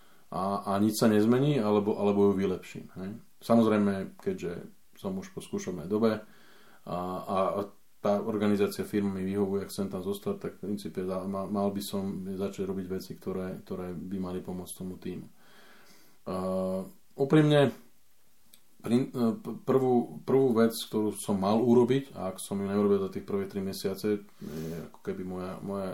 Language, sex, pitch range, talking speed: Slovak, male, 95-120 Hz, 150 wpm